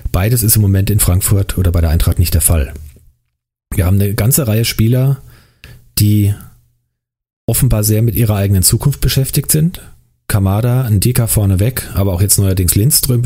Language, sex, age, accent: German, male, 40-59, German